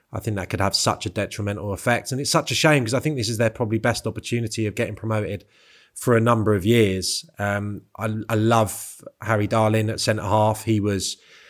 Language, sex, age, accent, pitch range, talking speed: English, male, 20-39, British, 100-115 Hz, 215 wpm